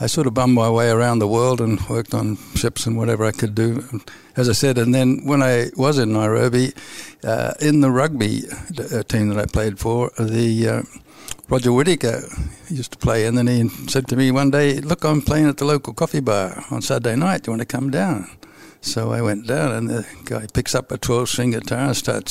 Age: 60-79